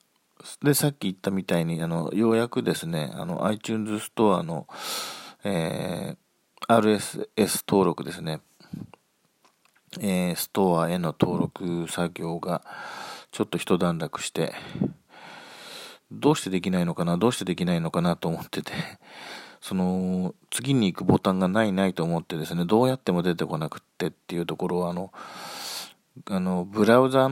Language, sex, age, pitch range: Japanese, male, 40-59, 85-110 Hz